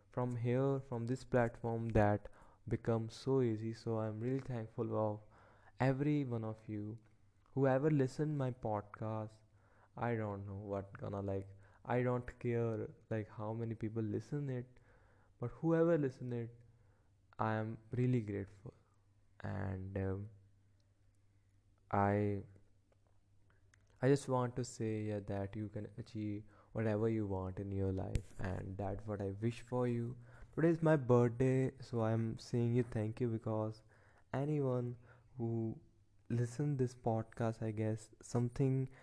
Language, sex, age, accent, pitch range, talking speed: English, male, 20-39, Indian, 105-120 Hz, 135 wpm